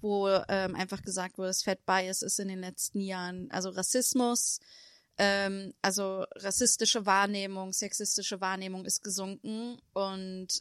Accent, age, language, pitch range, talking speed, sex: German, 30-49, German, 185-205 Hz, 130 wpm, female